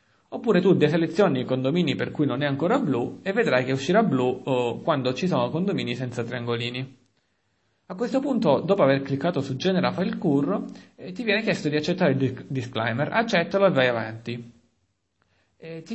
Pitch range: 130-190 Hz